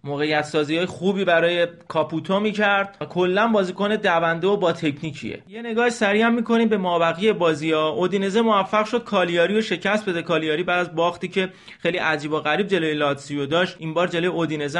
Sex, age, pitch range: male, 30-49, 160-190 Hz